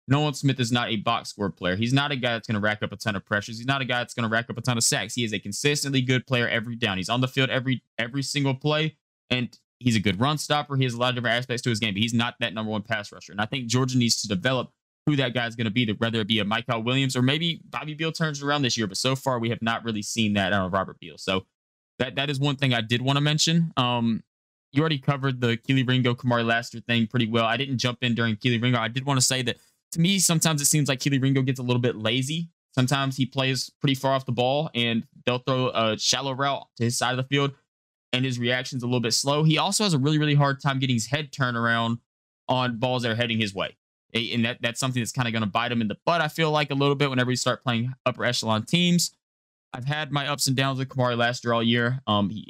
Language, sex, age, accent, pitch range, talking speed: English, male, 20-39, American, 115-135 Hz, 285 wpm